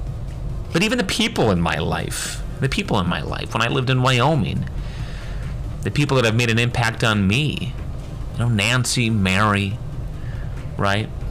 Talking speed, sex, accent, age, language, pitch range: 165 wpm, male, American, 30-49, English, 105-135 Hz